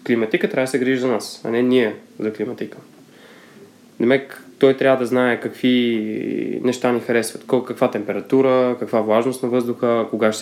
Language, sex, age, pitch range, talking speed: Bulgarian, male, 20-39, 110-130 Hz, 165 wpm